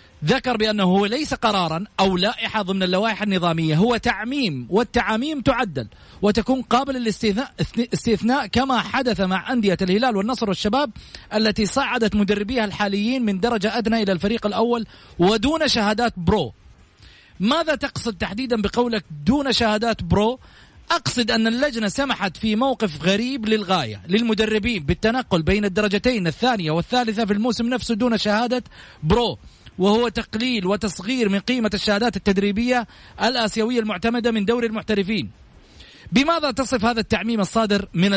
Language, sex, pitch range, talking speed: Arabic, male, 200-240 Hz, 130 wpm